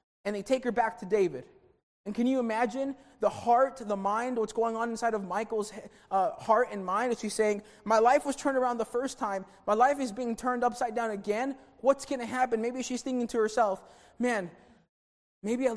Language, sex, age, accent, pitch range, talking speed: English, male, 20-39, American, 205-250 Hz, 215 wpm